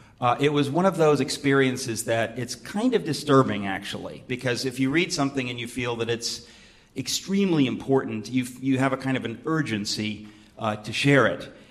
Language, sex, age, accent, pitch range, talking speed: English, male, 40-59, American, 120-145 Hz, 190 wpm